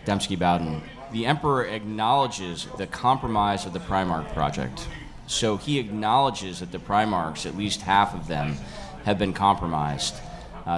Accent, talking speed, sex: American, 145 wpm, male